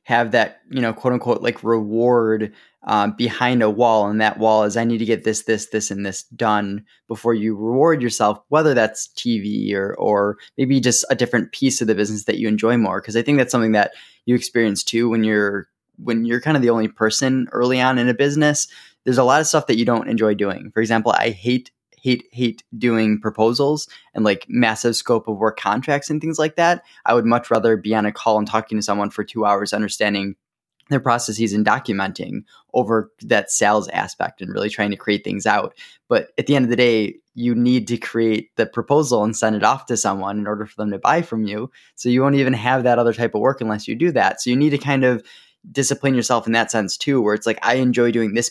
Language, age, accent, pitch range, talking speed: English, 10-29, American, 110-125 Hz, 235 wpm